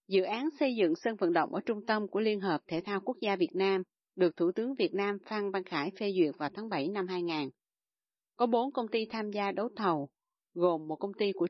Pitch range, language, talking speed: 175-225 Hz, Vietnamese, 245 wpm